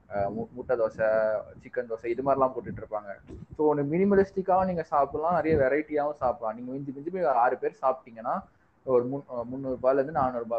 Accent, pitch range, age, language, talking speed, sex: native, 115-150 Hz, 20-39, Tamil, 140 wpm, male